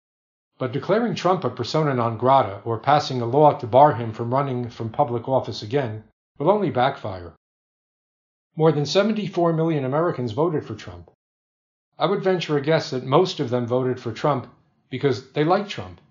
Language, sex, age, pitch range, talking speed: English, male, 50-69, 120-155 Hz, 175 wpm